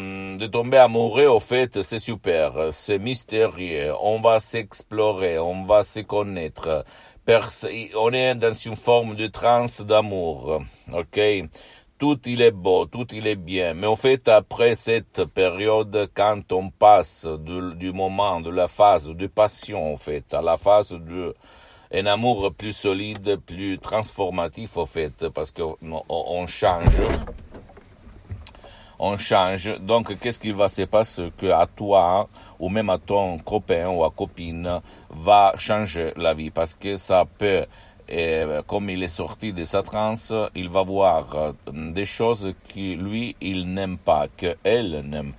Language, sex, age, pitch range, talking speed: Italian, male, 60-79, 90-110 Hz, 150 wpm